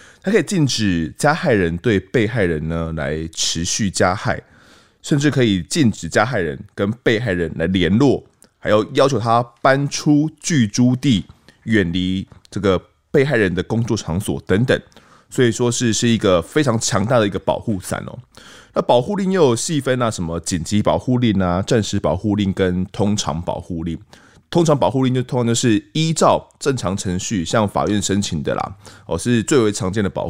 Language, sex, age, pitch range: Chinese, male, 20-39, 95-125 Hz